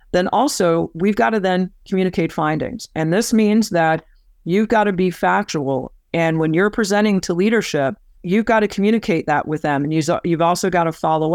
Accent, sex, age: American, female, 50-69